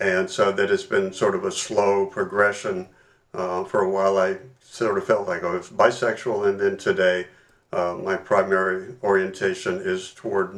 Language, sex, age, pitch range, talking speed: English, male, 50-69, 95-130 Hz, 175 wpm